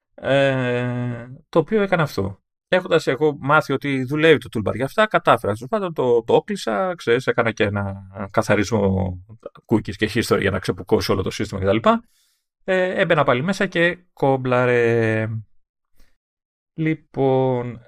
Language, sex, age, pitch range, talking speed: Greek, male, 30-49, 110-150 Hz, 145 wpm